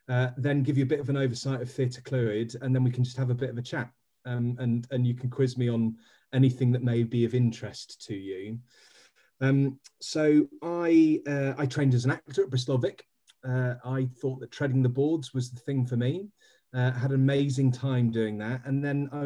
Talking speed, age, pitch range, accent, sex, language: 225 wpm, 30-49, 120-140 Hz, British, male, English